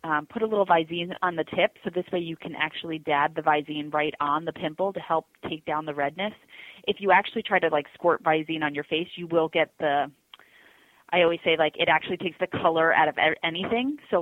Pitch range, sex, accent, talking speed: 155-185 Hz, female, American, 230 wpm